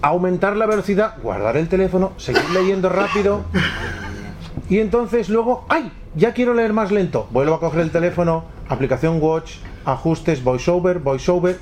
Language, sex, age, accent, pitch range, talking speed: Spanish, male, 40-59, Spanish, 125-190 Hz, 145 wpm